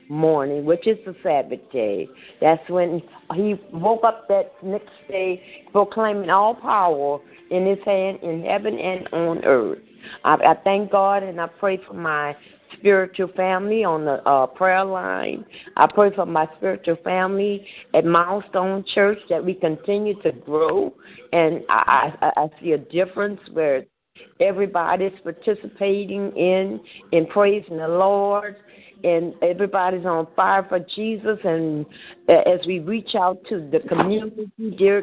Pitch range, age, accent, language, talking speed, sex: 170-210 Hz, 50-69, American, English, 145 wpm, female